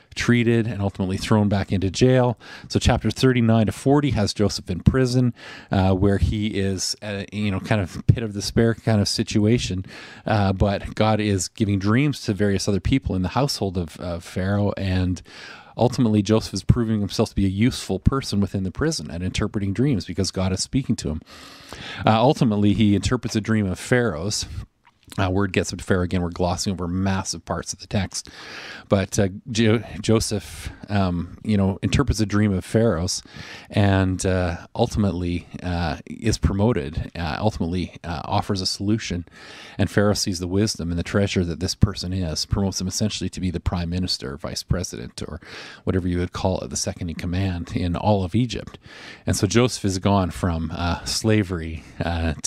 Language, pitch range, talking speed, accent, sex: English, 90-110 Hz, 185 wpm, American, male